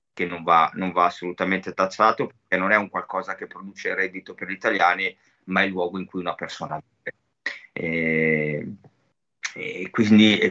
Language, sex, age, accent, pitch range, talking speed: Italian, male, 30-49, native, 95-120 Hz, 170 wpm